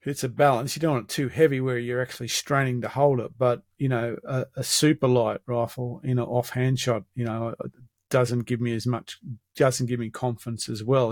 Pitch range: 115-130 Hz